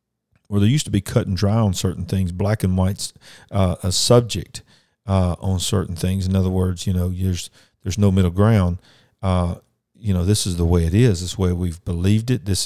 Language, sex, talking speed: English, male, 230 wpm